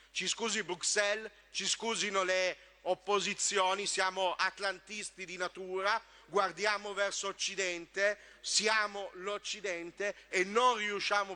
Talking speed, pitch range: 100 wpm, 195-225 Hz